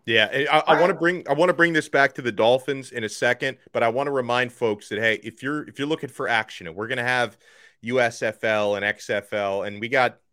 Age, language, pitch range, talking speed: 30-49, English, 115-145 Hz, 255 wpm